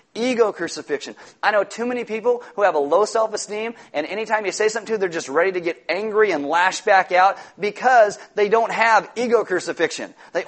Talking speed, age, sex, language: 205 wpm, 40-59, male, English